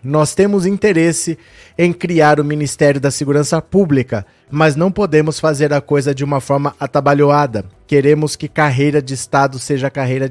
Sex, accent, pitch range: male, Brazilian, 130-165 Hz